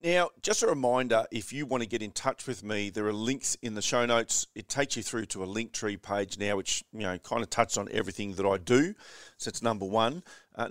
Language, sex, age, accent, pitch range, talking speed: English, male, 40-59, Australian, 100-120 Hz, 260 wpm